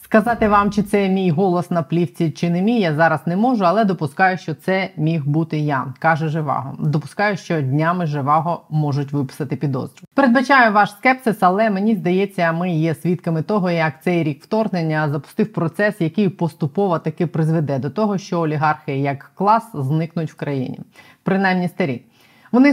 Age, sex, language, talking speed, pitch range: 20-39, female, Ukrainian, 165 wpm, 155-195 Hz